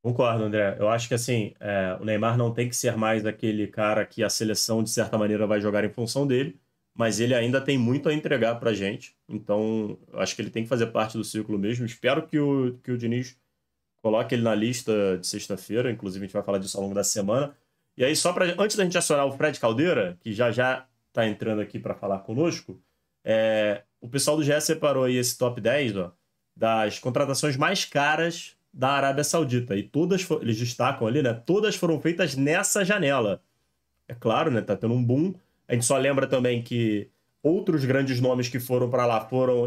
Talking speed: 215 wpm